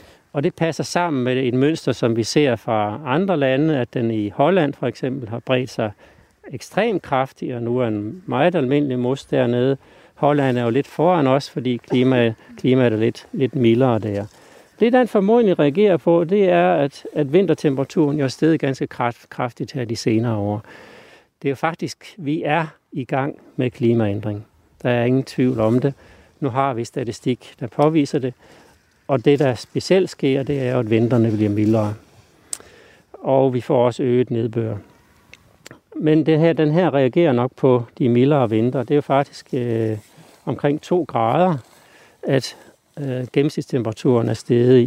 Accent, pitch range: native, 120-155 Hz